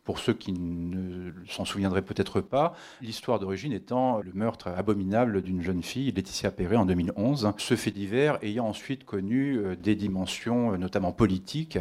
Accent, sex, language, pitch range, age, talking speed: French, male, French, 95-115 Hz, 40-59, 160 wpm